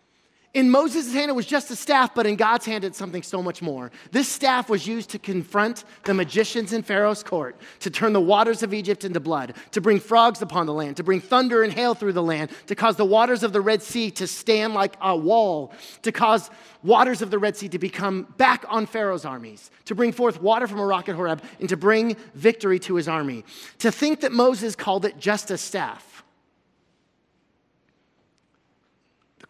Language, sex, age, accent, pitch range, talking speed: English, male, 30-49, American, 150-220 Hz, 205 wpm